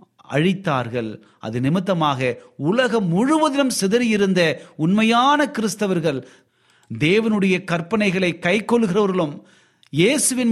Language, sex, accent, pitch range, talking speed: Tamil, male, native, 135-200 Hz, 70 wpm